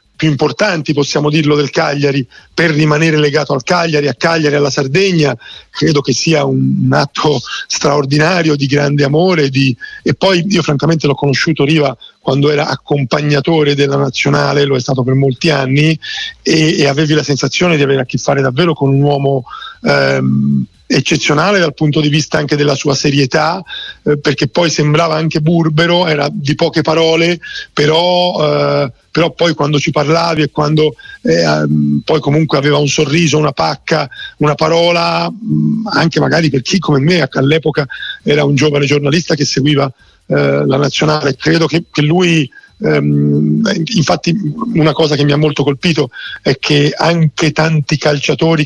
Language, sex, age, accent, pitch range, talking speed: Italian, male, 40-59, native, 140-160 Hz, 155 wpm